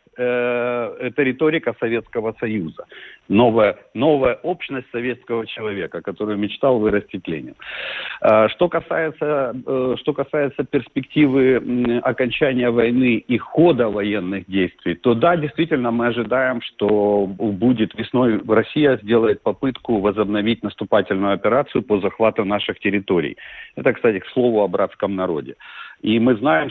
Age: 50-69